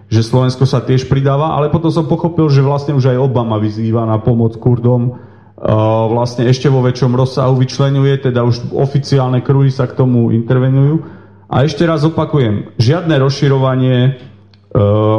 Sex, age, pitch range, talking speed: male, 40-59, 120-145 Hz, 160 wpm